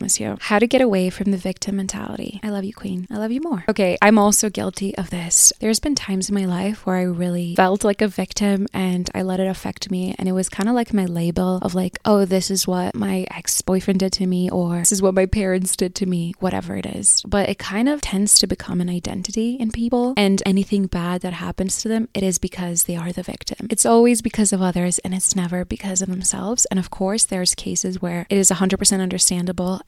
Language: English